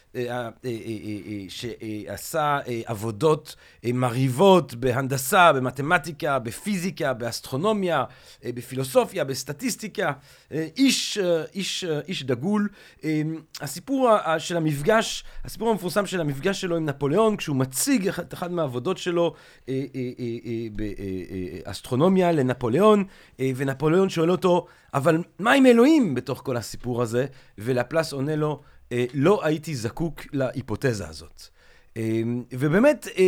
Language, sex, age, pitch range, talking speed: Hebrew, male, 40-59, 125-180 Hz, 90 wpm